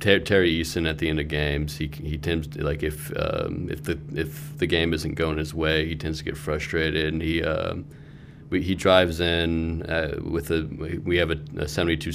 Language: English